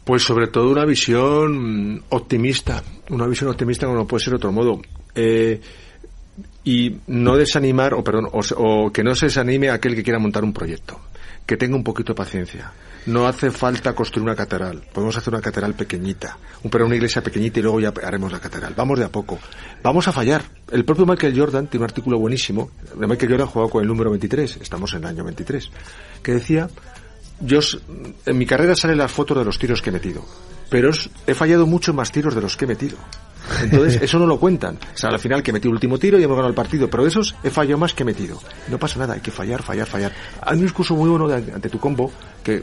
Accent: Spanish